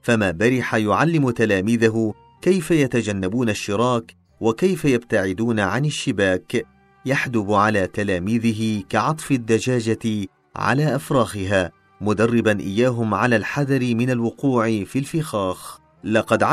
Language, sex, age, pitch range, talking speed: Arabic, male, 40-59, 105-130 Hz, 100 wpm